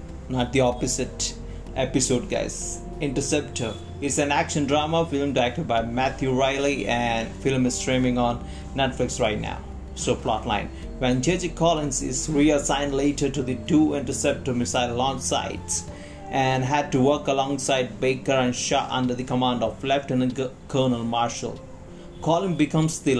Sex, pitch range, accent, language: male, 115-145 Hz, native, Hindi